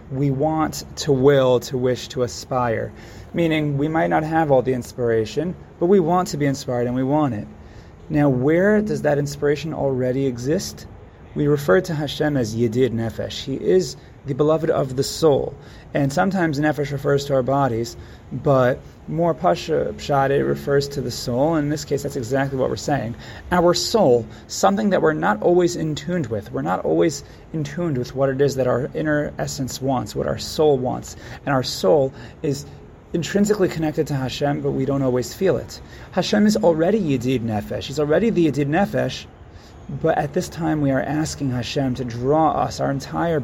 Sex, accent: male, American